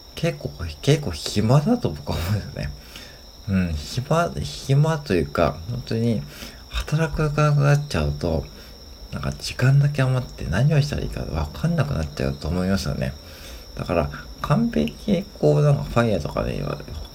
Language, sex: Japanese, male